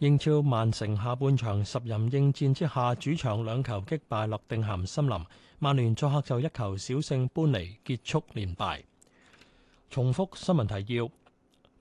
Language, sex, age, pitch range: Chinese, male, 30-49, 115-150 Hz